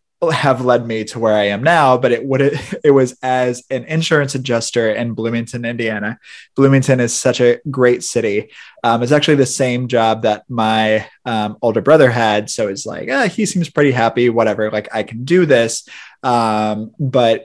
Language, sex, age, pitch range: English, male, 20-39, 120-150 Hz